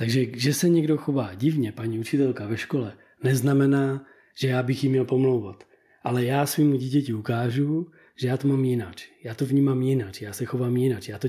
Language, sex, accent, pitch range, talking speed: Czech, male, native, 125-155 Hz, 195 wpm